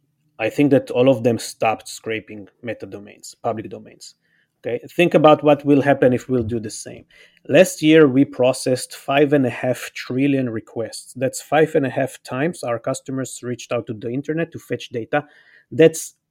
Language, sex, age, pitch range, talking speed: English, male, 30-49, 125-150 Hz, 185 wpm